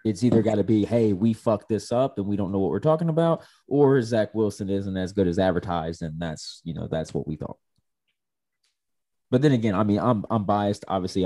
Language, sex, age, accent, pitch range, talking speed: English, male, 20-39, American, 90-110 Hz, 230 wpm